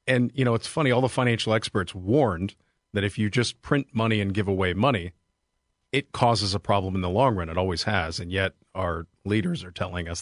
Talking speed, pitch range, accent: 225 wpm, 95-115 Hz, American